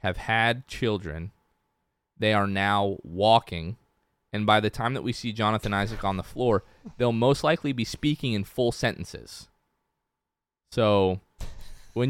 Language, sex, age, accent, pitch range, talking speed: English, male, 20-39, American, 100-120 Hz, 145 wpm